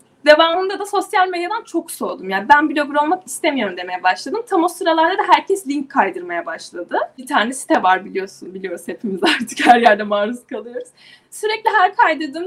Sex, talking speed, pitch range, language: female, 175 wpm, 255-335 Hz, Turkish